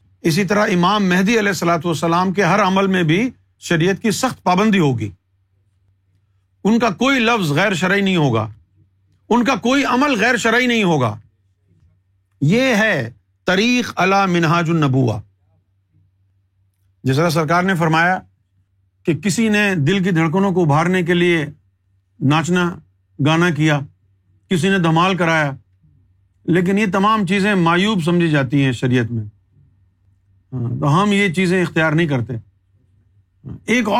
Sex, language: male, Urdu